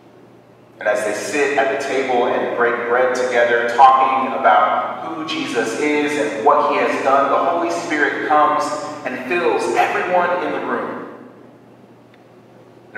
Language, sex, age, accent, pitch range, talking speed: English, male, 30-49, American, 120-135 Hz, 150 wpm